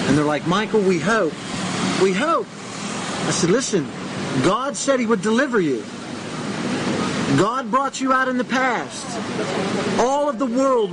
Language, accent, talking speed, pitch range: English, American, 155 wpm, 195-245 Hz